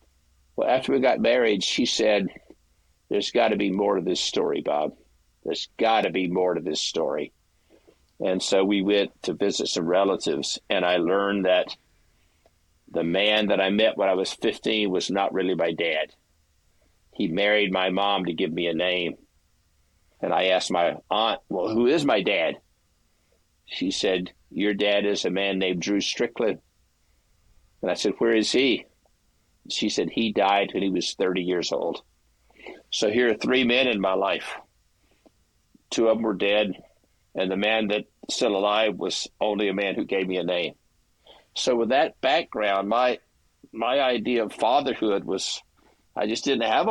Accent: American